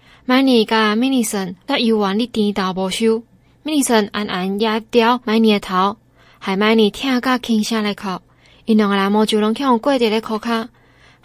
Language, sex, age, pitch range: Chinese, female, 20-39, 195-245 Hz